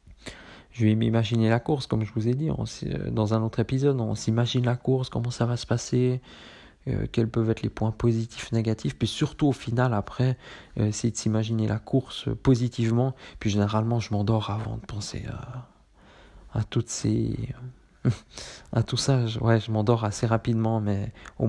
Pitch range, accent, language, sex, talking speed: 105-120 Hz, French, French, male, 185 wpm